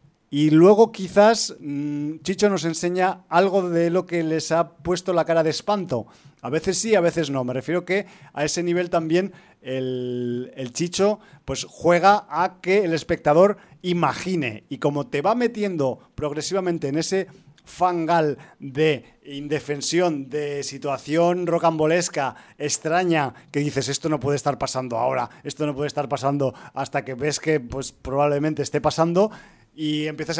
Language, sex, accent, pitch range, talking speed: Spanish, male, Spanish, 140-175 Hz, 155 wpm